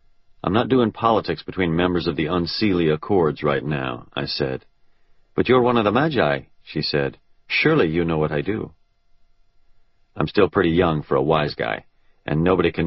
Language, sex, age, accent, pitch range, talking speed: English, male, 40-59, American, 75-95 Hz, 180 wpm